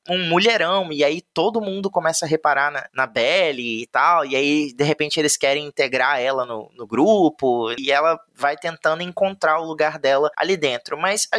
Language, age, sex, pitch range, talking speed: Portuguese, 20-39, male, 150-200 Hz, 195 wpm